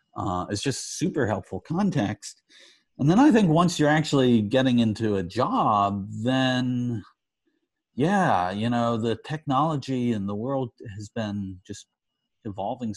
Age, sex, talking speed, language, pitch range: 40-59, male, 140 wpm, English, 100-140 Hz